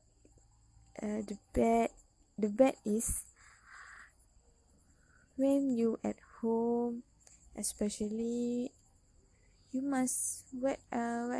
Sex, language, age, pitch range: female, Malay, 20-39, 205-245 Hz